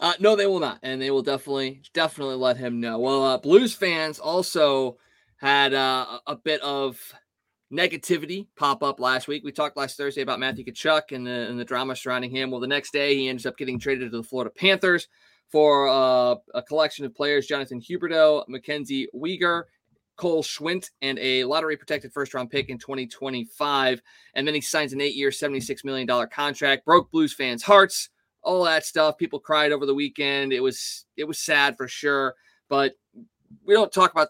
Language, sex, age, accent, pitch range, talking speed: English, male, 20-39, American, 130-160 Hz, 185 wpm